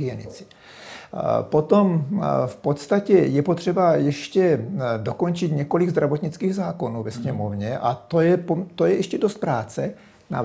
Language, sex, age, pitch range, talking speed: Czech, male, 60-79, 125-165 Hz, 125 wpm